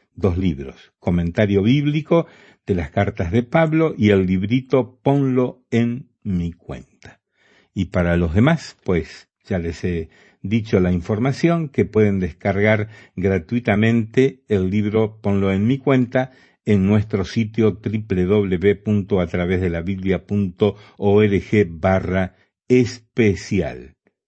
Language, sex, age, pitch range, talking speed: Spanish, male, 50-69, 90-110 Hz, 105 wpm